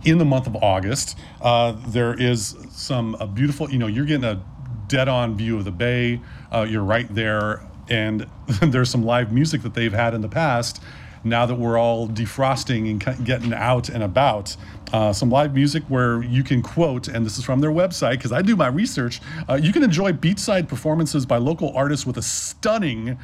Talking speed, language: 200 wpm, English